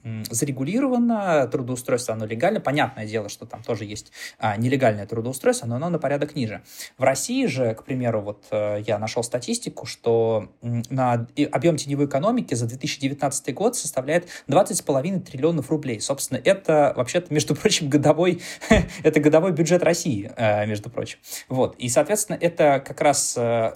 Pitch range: 120-155 Hz